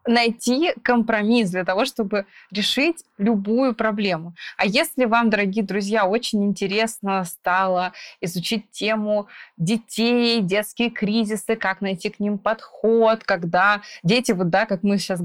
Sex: female